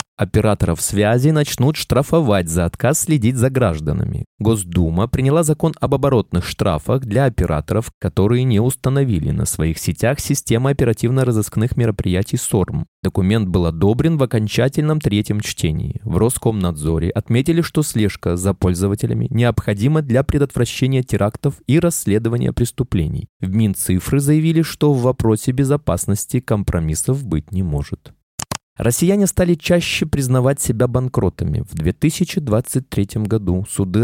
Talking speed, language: 120 wpm, Russian